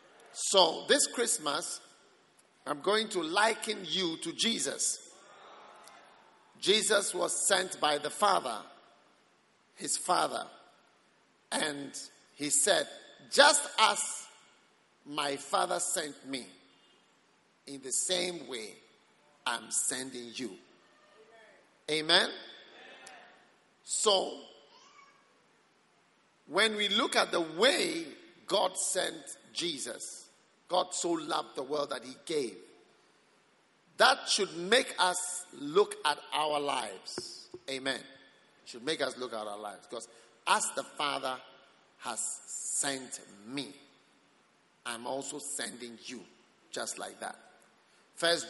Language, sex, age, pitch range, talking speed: English, male, 50-69, 140-220 Hz, 105 wpm